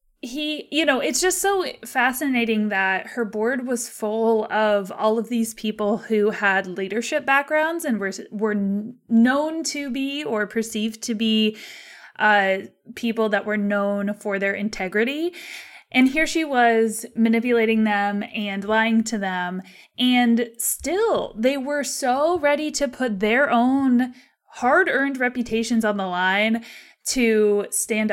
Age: 20-39